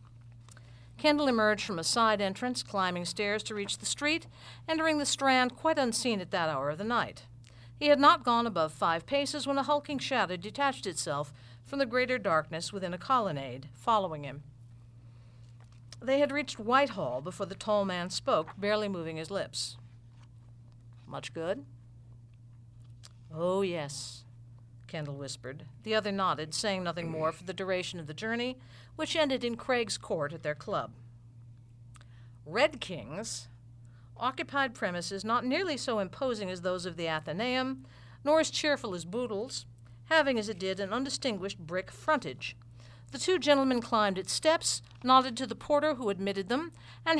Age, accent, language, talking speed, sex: 50-69, American, English, 160 wpm, female